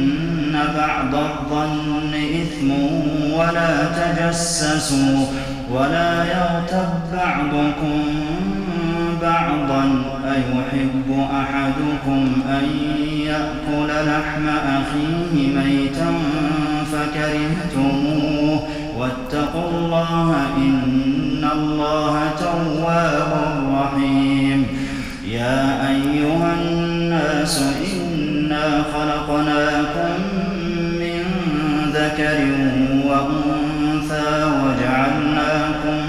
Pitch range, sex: 135-155 Hz, male